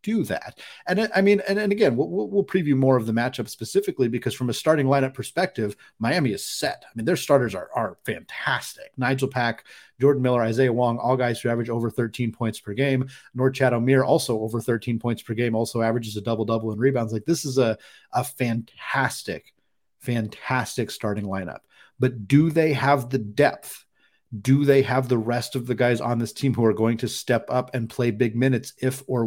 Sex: male